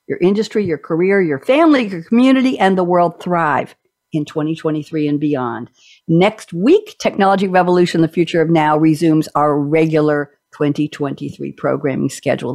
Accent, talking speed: American, 145 wpm